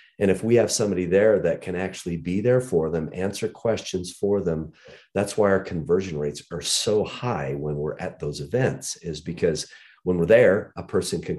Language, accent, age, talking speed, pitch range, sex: English, American, 40-59, 200 wpm, 80-95 Hz, male